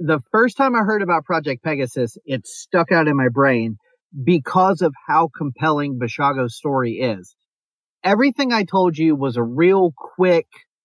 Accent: American